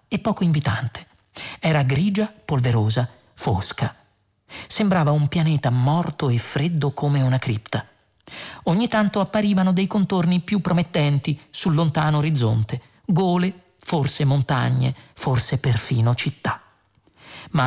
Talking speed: 110 wpm